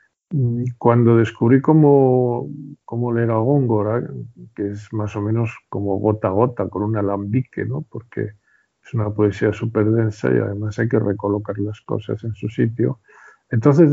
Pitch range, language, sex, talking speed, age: 105-125 Hz, Spanish, male, 160 wpm, 50-69